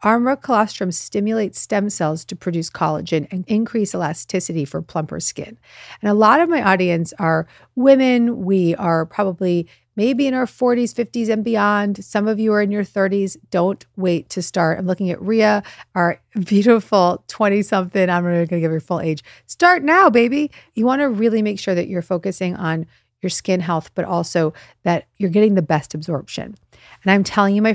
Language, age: English, 40-59